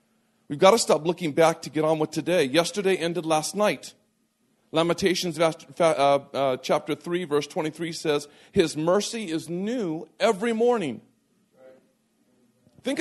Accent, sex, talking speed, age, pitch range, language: American, male, 135 wpm, 40-59, 170-225 Hz, English